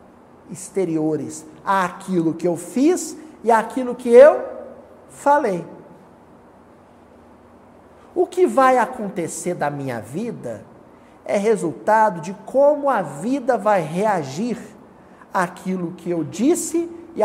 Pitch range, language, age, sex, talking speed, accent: 160-240 Hz, Portuguese, 50-69, male, 105 wpm, Brazilian